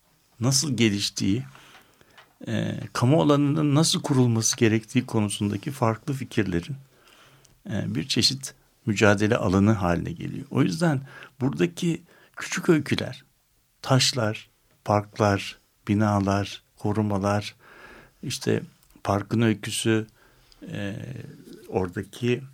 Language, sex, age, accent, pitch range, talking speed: Turkish, male, 60-79, native, 105-135 Hz, 85 wpm